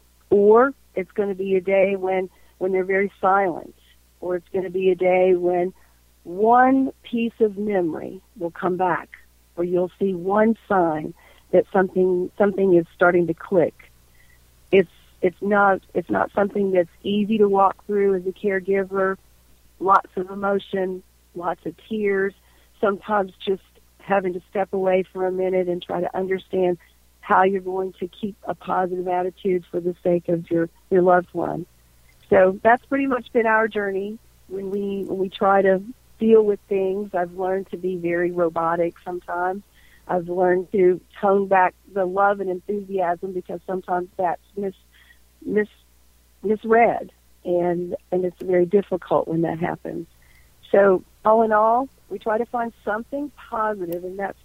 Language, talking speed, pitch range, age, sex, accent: English, 160 wpm, 180-200 Hz, 50-69, female, American